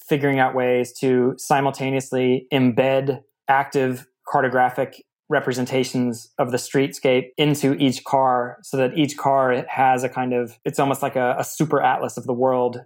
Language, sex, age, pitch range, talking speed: English, male, 20-39, 125-135 Hz, 155 wpm